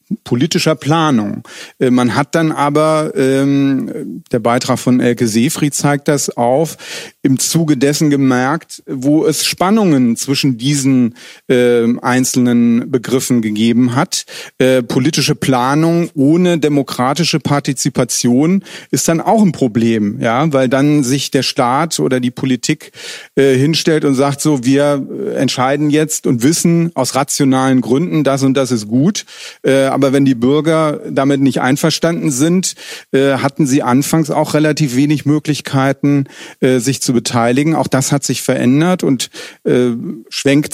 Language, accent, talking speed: German, German, 135 wpm